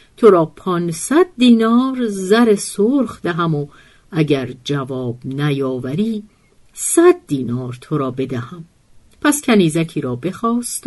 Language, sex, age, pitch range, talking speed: Persian, female, 50-69, 145-220 Hz, 110 wpm